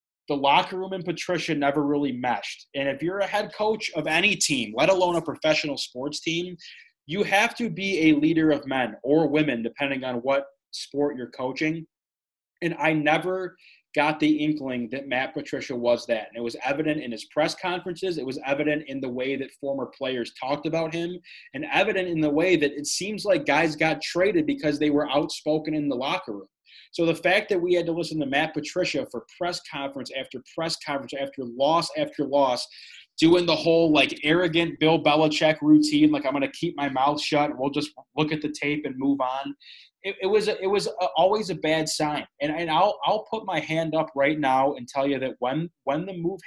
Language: English